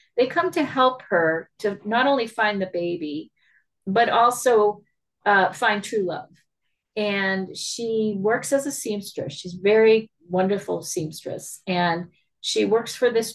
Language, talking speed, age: English, 145 wpm, 40-59